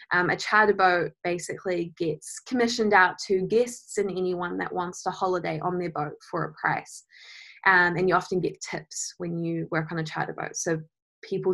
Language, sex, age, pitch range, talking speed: English, female, 20-39, 185-220 Hz, 190 wpm